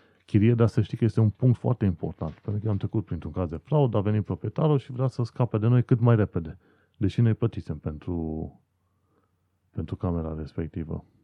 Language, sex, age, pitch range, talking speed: Romanian, male, 30-49, 90-110 Hz, 200 wpm